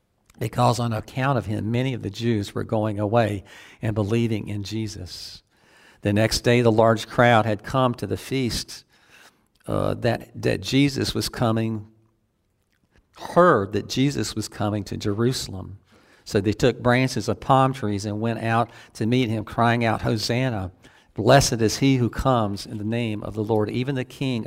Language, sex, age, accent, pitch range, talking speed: English, male, 50-69, American, 105-125 Hz, 170 wpm